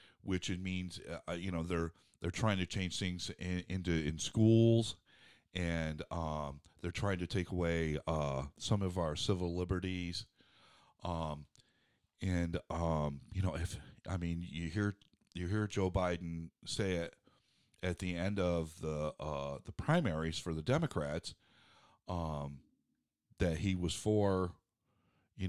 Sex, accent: male, American